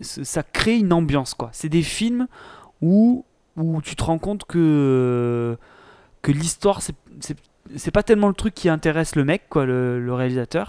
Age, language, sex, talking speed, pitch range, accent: 20-39, French, male, 180 wpm, 135-175 Hz, French